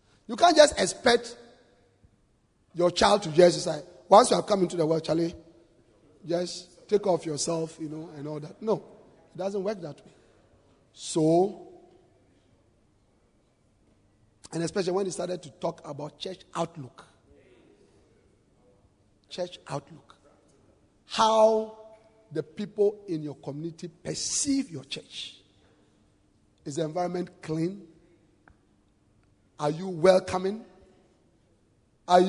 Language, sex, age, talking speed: English, male, 50-69, 115 wpm